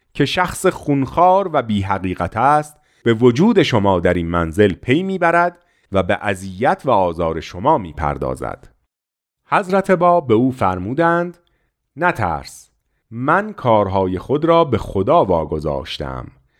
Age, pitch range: 40-59, 90-150 Hz